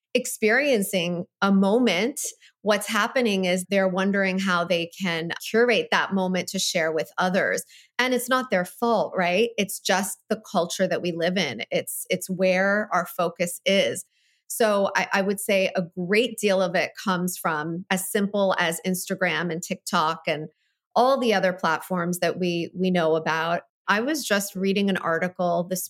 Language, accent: English, American